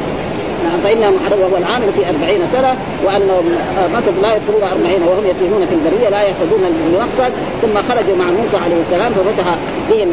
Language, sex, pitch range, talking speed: Arabic, female, 190-265 Hz, 150 wpm